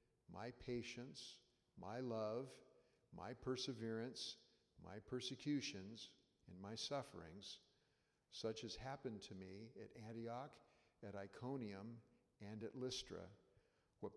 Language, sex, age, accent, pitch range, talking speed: English, male, 50-69, American, 105-130 Hz, 100 wpm